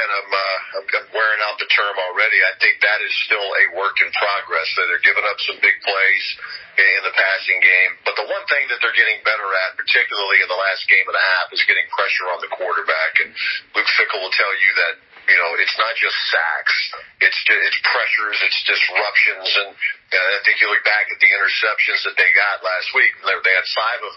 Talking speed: 215 wpm